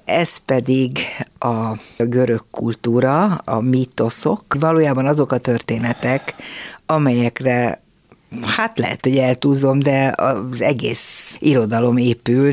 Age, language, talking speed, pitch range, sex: 60-79, Hungarian, 100 wpm, 120-145 Hz, female